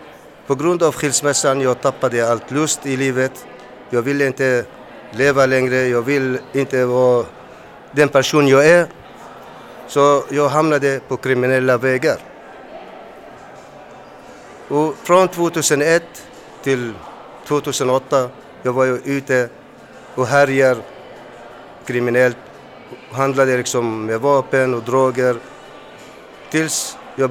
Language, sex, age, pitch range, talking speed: Swedish, male, 50-69, 125-145 Hz, 105 wpm